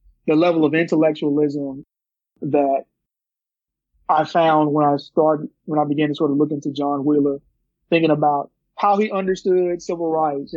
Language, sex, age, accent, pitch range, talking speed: English, male, 20-39, American, 150-180 Hz, 155 wpm